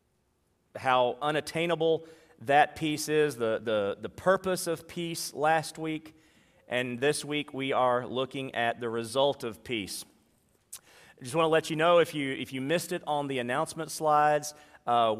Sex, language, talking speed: male, English, 165 wpm